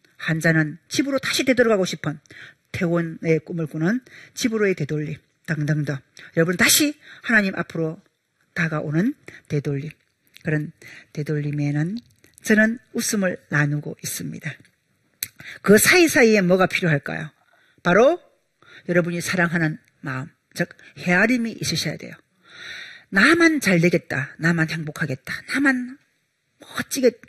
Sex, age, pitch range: female, 40-59, 155-215 Hz